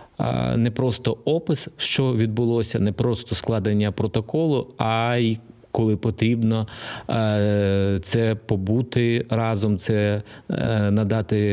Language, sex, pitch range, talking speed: Ukrainian, male, 110-145 Hz, 95 wpm